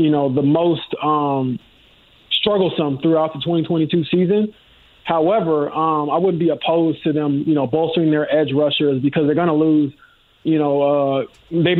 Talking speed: 170 wpm